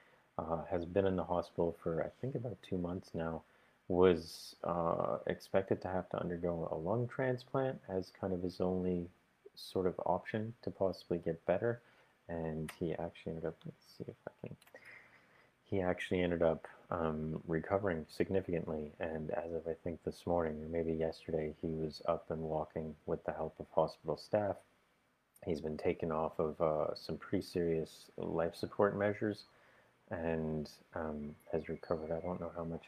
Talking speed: 170 wpm